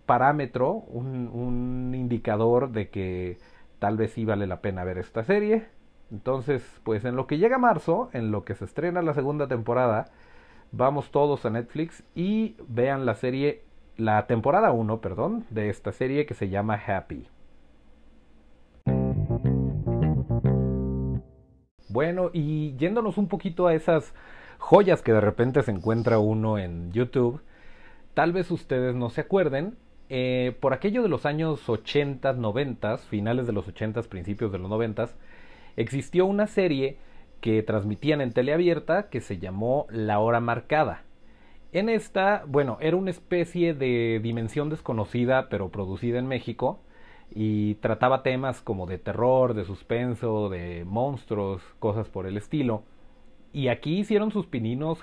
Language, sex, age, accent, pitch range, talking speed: Spanish, male, 40-59, Mexican, 105-145 Hz, 145 wpm